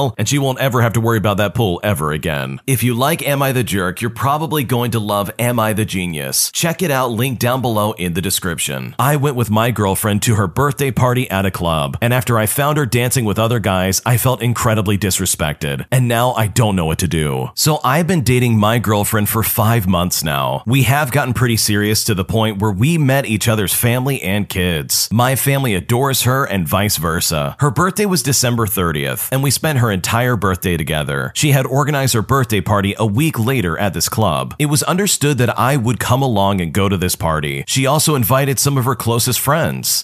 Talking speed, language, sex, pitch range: 220 wpm, English, male, 95-135 Hz